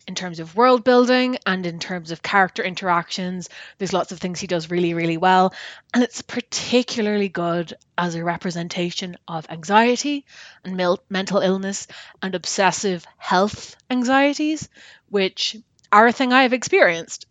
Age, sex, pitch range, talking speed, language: 20-39, female, 180-235 Hz, 150 wpm, English